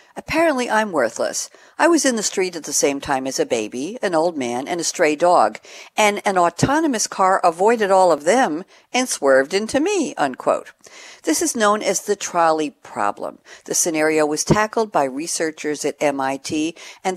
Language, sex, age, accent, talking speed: English, female, 60-79, American, 175 wpm